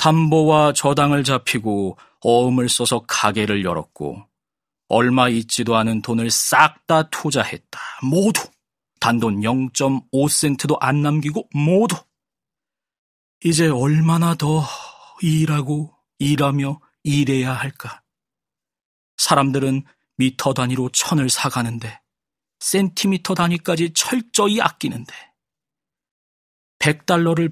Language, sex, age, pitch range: Korean, male, 40-59, 120-155 Hz